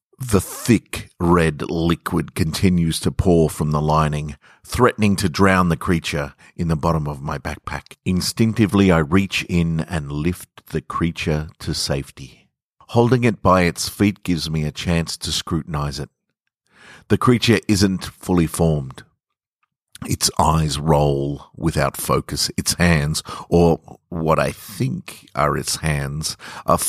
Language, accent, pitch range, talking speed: English, Australian, 75-95 Hz, 140 wpm